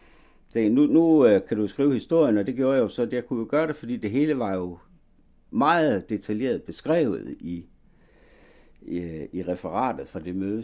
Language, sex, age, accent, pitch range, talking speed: Danish, male, 60-79, native, 90-115 Hz, 185 wpm